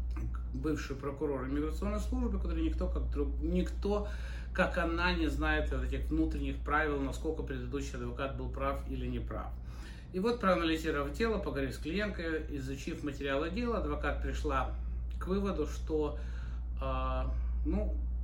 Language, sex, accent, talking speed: Russian, male, native, 140 wpm